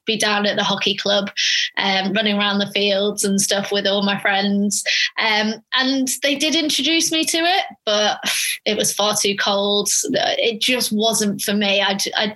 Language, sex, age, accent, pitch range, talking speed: English, female, 20-39, British, 205-250 Hz, 190 wpm